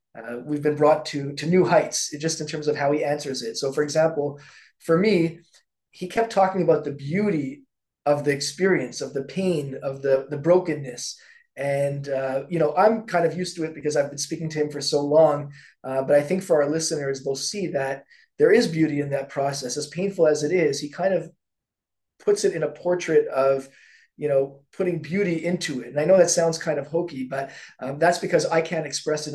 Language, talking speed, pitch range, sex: English, 220 wpm, 140-165 Hz, male